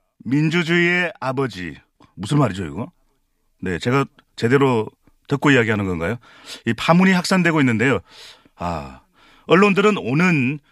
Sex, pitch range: male, 115-160 Hz